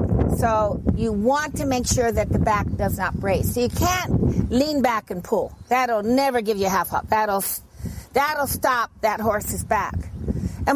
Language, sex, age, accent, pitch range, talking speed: English, female, 50-69, American, 225-285 Hz, 185 wpm